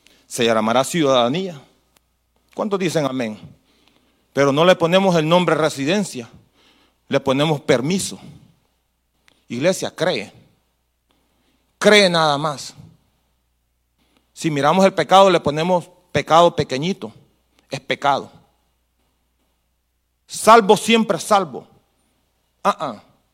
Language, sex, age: Spanish, male, 40-59